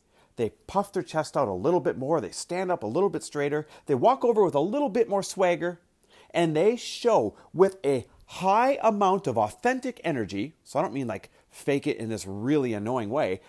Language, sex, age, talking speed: English, male, 40-59, 210 wpm